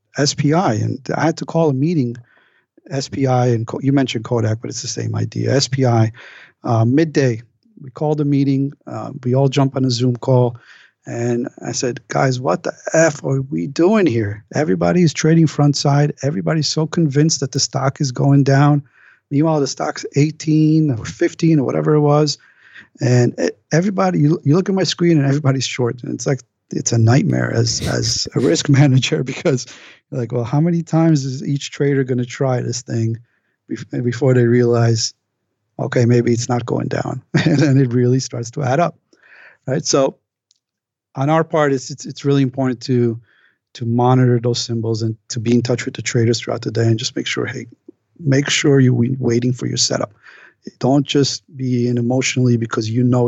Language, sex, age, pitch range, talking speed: English, male, 50-69, 120-145 Hz, 190 wpm